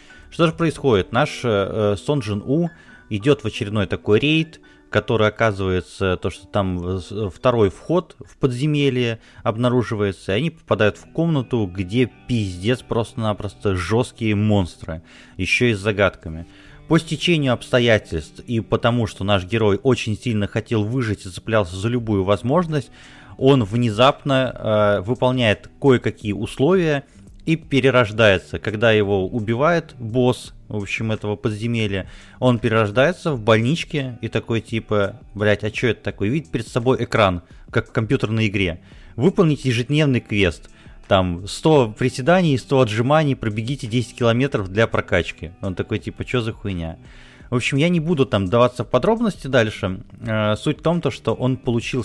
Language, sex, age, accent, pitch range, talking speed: Russian, male, 30-49, native, 100-130 Hz, 145 wpm